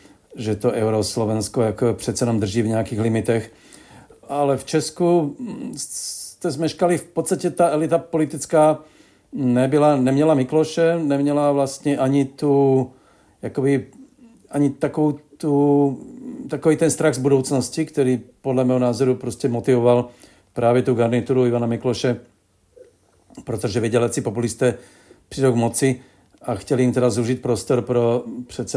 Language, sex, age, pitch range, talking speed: Czech, male, 50-69, 115-135 Hz, 120 wpm